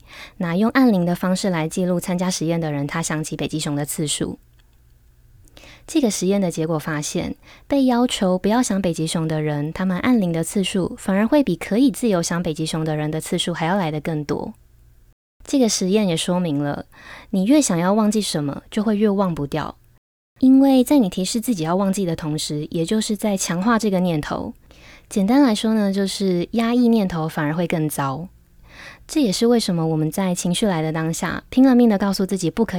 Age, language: 20-39, Chinese